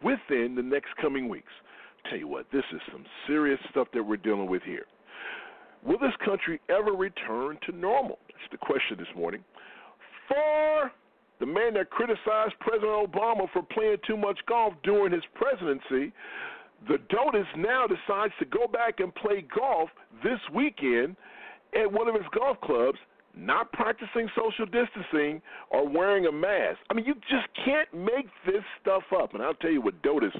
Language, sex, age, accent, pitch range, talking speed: English, male, 50-69, American, 195-300 Hz, 170 wpm